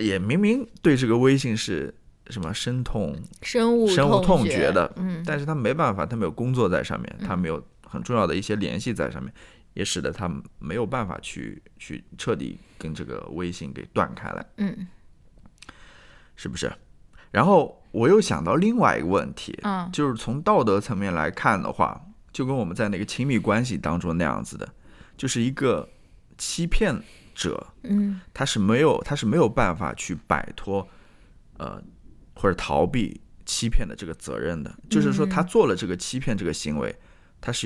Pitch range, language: 90-140 Hz, Chinese